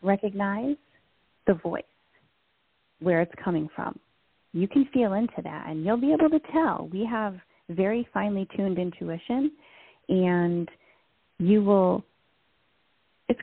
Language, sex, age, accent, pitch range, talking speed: English, female, 30-49, American, 170-225 Hz, 125 wpm